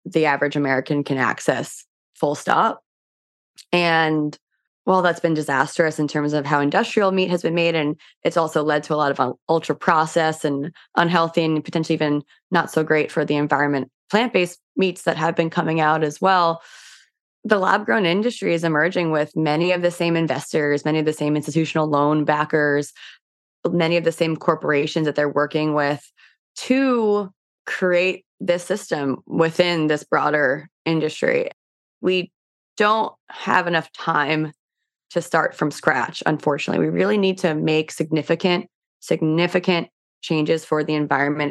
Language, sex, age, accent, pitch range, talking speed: English, female, 20-39, American, 150-175 Hz, 155 wpm